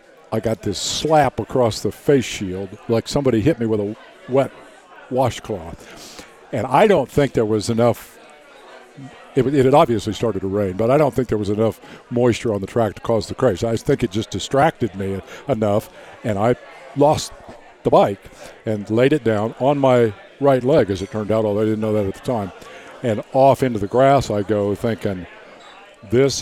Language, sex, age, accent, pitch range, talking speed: English, male, 50-69, American, 105-130 Hz, 195 wpm